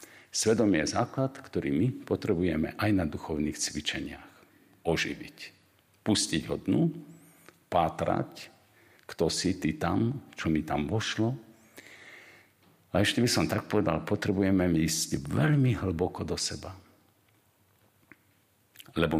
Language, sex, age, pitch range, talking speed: Slovak, male, 50-69, 85-115 Hz, 115 wpm